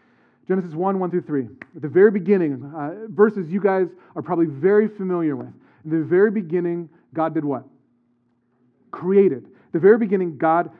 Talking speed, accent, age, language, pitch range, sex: 155 wpm, American, 40-59, English, 140-175 Hz, male